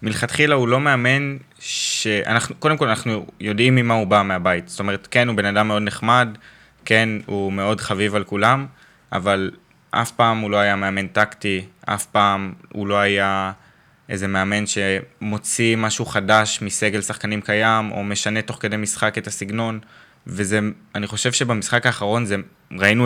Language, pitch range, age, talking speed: Hebrew, 100-120 Hz, 20-39, 160 wpm